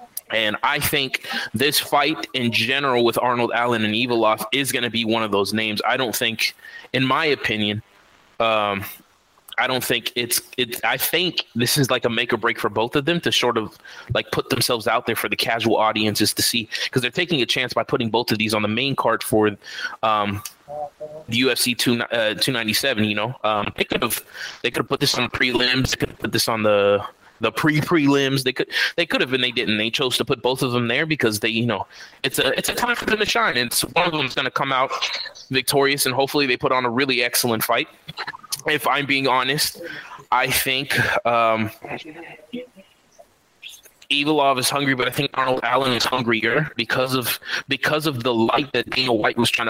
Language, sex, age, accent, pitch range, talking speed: English, male, 20-39, American, 110-135 Hz, 215 wpm